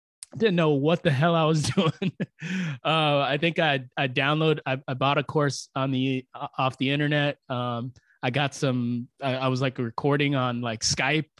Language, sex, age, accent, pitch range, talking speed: English, male, 20-39, American, 125-150 Hz, 195 wpm